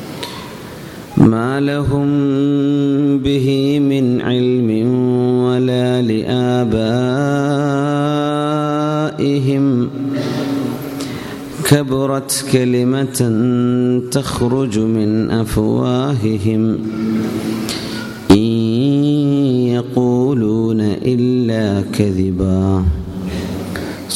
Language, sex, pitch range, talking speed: Malayalam, male, 100-125 Hz, 40 wpm